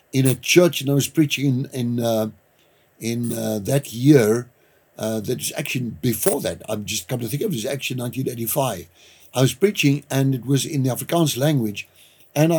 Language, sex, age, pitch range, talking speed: English, male, 60-79, 130-170 Hz, 195 wpm